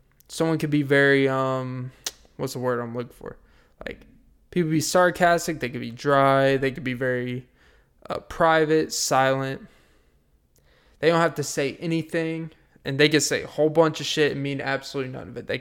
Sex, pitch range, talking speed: male, 125-165 Hz, 185 wpm